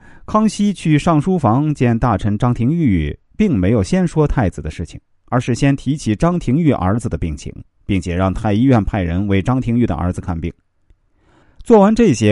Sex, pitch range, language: male, 95-150 Hz, Chinese